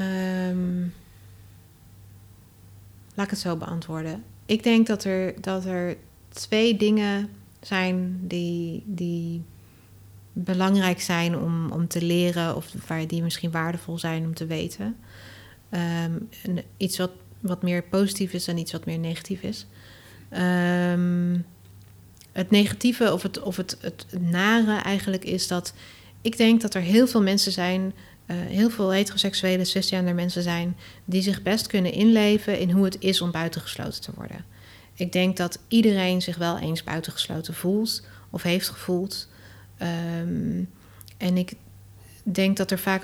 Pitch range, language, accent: 165-195 Hz, Dutch, Dutch